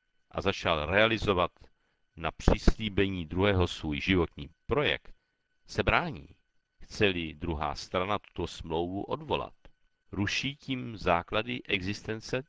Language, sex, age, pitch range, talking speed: Czech, male, 50-69, 90-130 Hz, 100 wpm